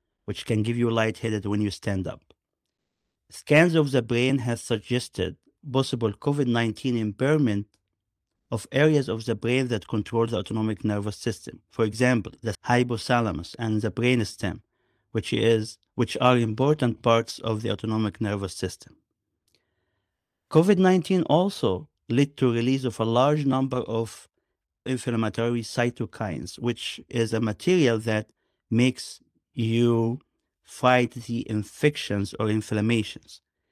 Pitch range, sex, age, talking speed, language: 110-130 Hz, male, 50-69, 125 wpm, English